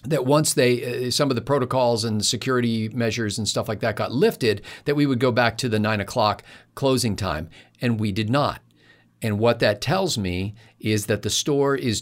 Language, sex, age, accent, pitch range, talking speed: English, male, 50-69, American, 100-125 Hz, 210 wpm